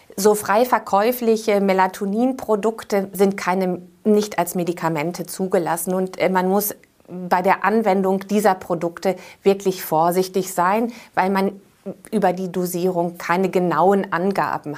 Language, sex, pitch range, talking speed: German, female, 175-210 Hz, 120 wpm